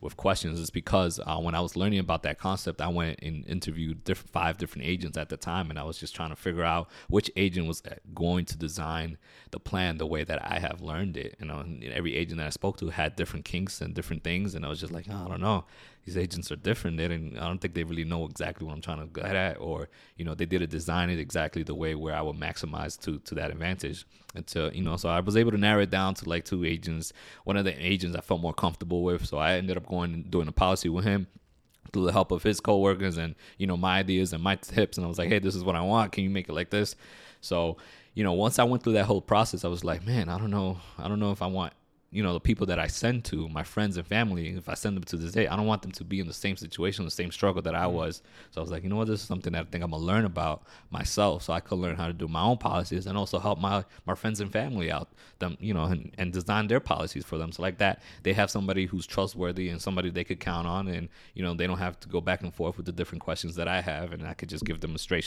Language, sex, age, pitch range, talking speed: English, male, 20-39, 80-95 Hz, 290 wpm